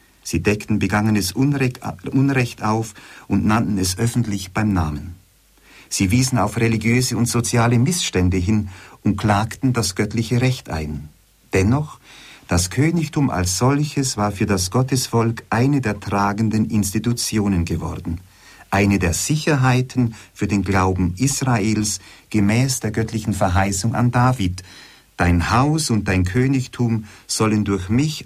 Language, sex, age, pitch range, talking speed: German, male, 50-69, 95-125 Hz, 125 wpm